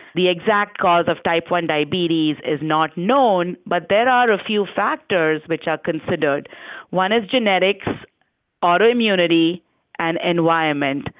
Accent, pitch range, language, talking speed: Indian, 165-205 Hz, English, 135 wpm